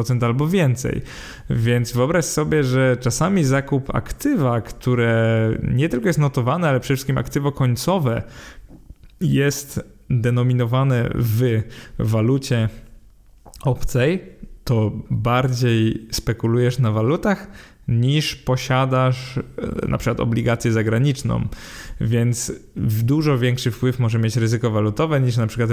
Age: 20-39